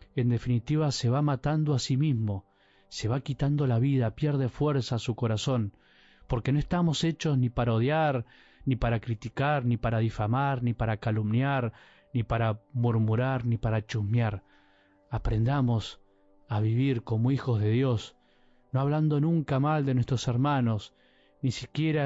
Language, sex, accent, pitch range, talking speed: Spanish, male, Argentinian, 110-135 Hz, 150 wpm